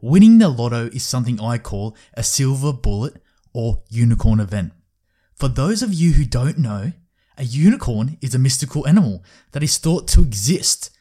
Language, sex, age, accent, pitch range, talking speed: English, male, 20-39, Australian, 105-145 Hz, 170 wpm